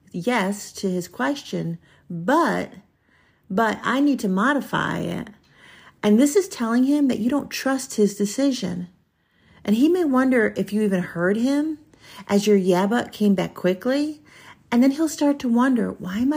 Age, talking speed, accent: 40-59, 165 wpm, American